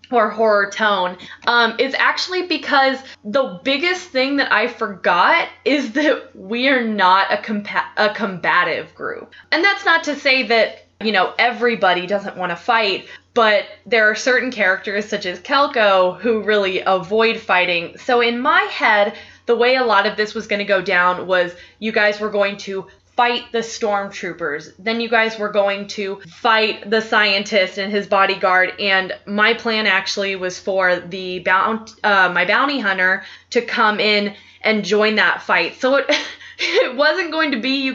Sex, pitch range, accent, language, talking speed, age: female, 200-260 Hz, American, English, 175 wpm, 20-39